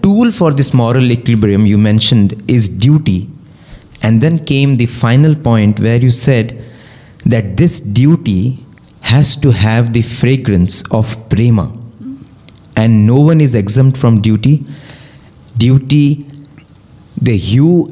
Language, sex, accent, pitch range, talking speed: English, male, Indian, 110-135 Hz, 125 wpm